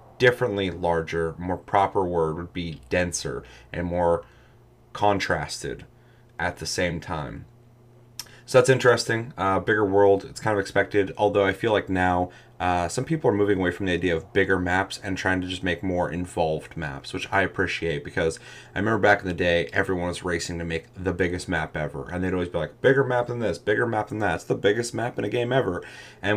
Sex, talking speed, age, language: male, 205 wpm, 30-49, English